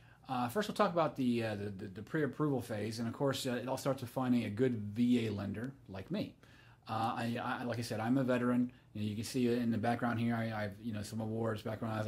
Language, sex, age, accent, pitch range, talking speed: English, male, 30-49, American, 110-130 Hz, 240 wpm